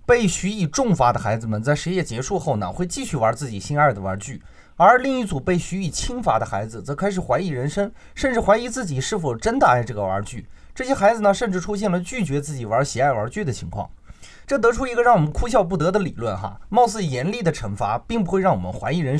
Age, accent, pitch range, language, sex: 30-49, native, 120-195 Hz, Chinese, male